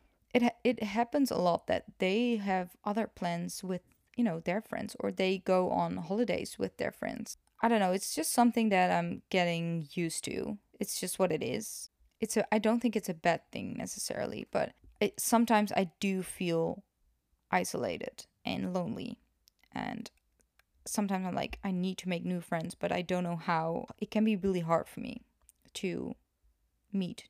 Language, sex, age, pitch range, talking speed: English, female, 20-39, 175-225 Hz, 180 wpm